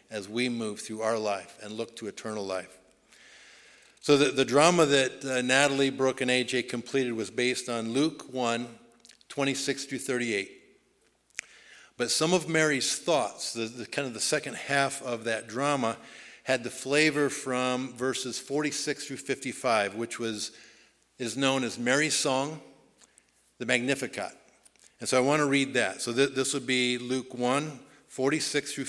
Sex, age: male, 50-69